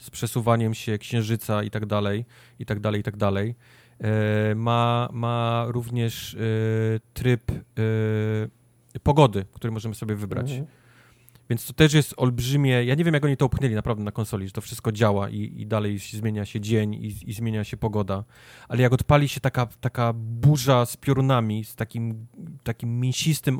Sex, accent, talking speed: male, native, 165 wpm